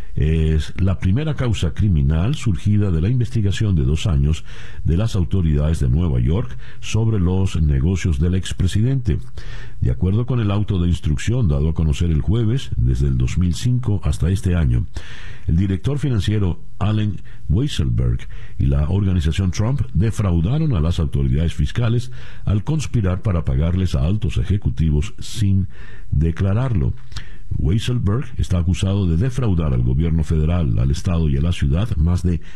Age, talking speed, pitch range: 60-79, 145 wpm, 80-110 Hz